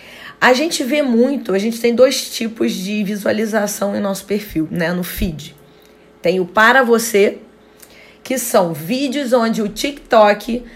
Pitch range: 200-260 Hz